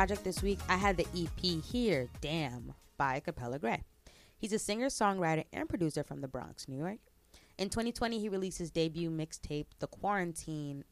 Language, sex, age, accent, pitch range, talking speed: English, female, 20-39, American, 140-195 Hz, 175 wpm